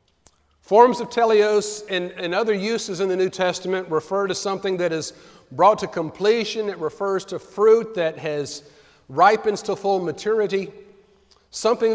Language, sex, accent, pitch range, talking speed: English, male, American, 185-230 Hz, 150 wpm